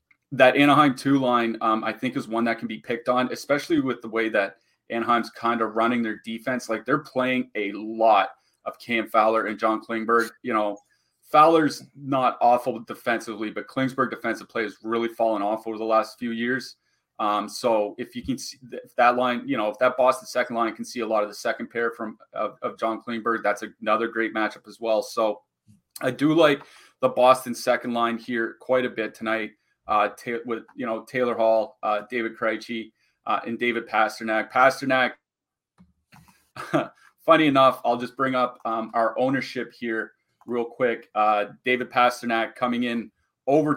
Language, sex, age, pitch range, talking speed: English, male, 30-49, 110-130 Hz, 185 wpm